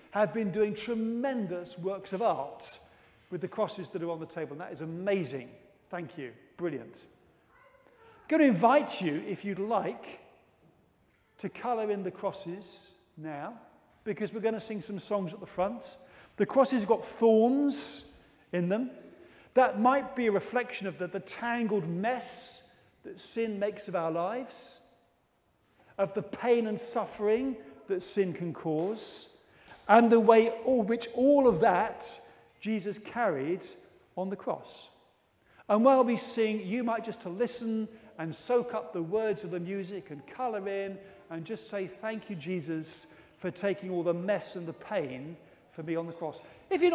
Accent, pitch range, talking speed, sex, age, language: British, 185-235 Hz, 170 wpm, male, 40-59, English